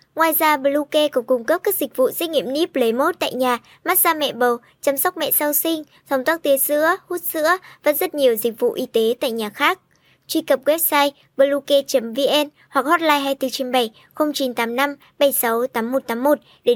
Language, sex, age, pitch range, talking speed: Vietnamese, male, 10-29, 245-300 Hz, 180 wpm